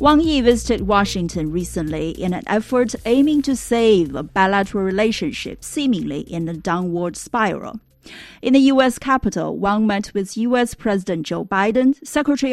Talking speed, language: 150 wpm, English